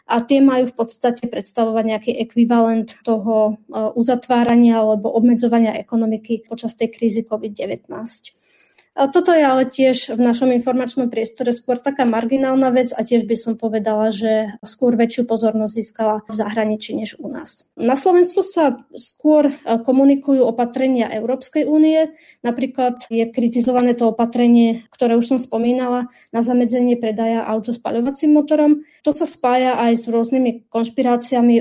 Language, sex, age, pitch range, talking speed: Slovak, female, 20-39, 225-255 Hz, 140 wpm